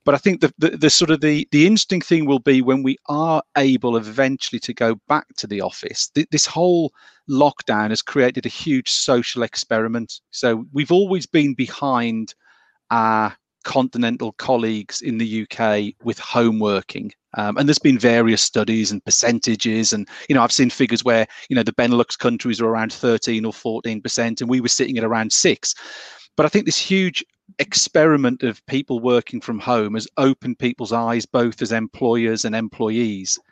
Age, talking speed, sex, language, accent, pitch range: 40-59, 180 wpm, male, English, British, 115-145 Hz